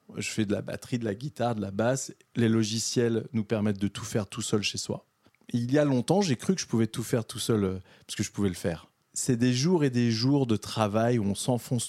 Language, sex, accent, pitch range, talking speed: French, male, French, 105-130 Hz, 265 wpm